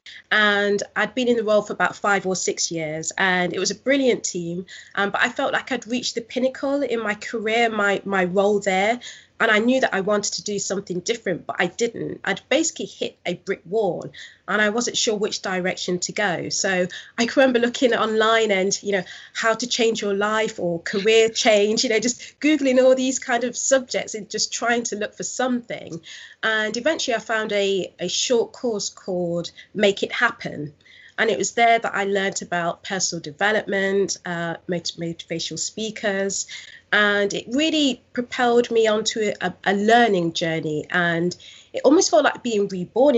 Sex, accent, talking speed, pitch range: female, British, 190 wpm, 185-230 Hz